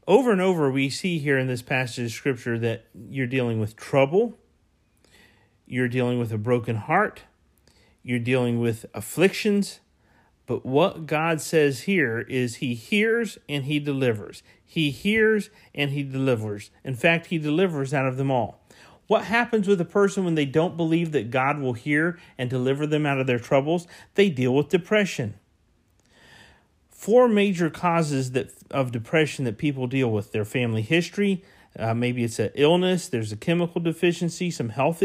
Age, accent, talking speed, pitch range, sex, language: 40-59, American, 170 wpm, 120-175 Hz, male, English